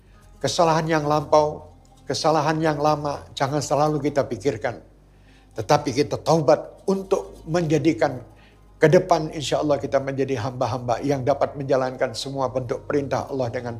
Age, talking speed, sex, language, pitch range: 60-79, 130 wpm, male, Indonesian, 120-155 Hz